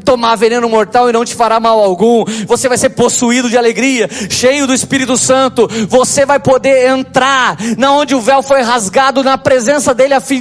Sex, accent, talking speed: male, Brazilian, 195 wpm